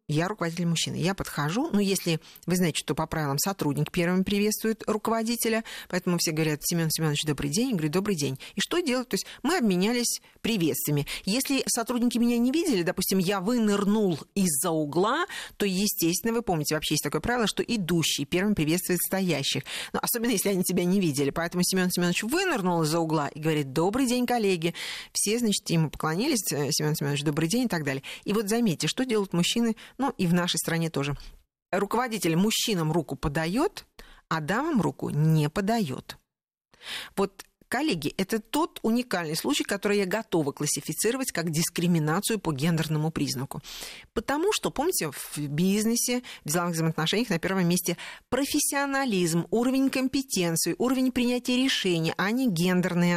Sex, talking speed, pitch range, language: female, 160 wpm, 165-225 Hz, Russian